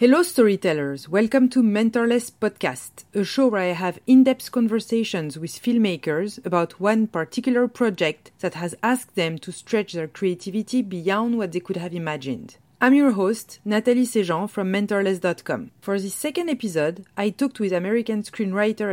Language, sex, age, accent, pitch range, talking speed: English, female, 40-59, French, 170-230 Hz, 155 wpm